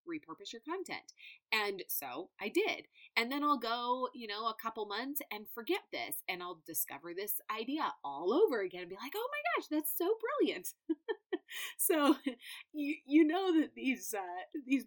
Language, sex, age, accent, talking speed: English, female, 30-49, American, 180 wpm